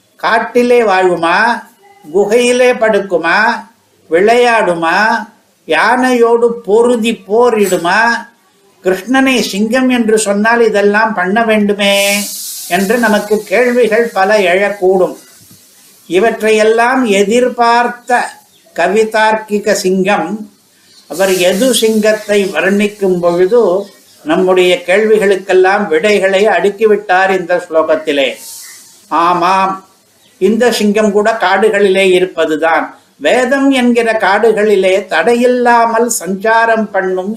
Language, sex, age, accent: Tamil, male, 60-79, native